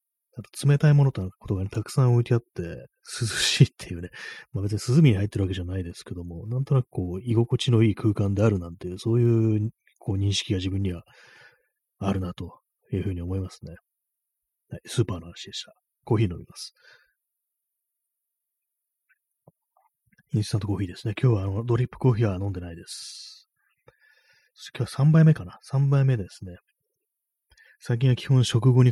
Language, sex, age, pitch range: Japanese, male, 30-49, 95-125 Hz